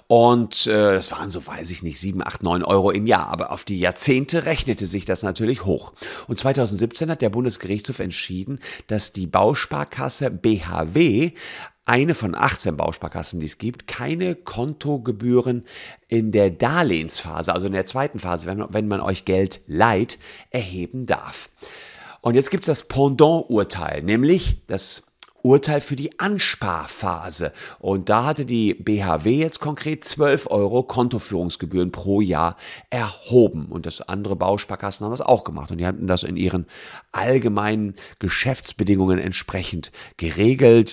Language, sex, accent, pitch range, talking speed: German, male, German, 85-120 Hz, 150 wpm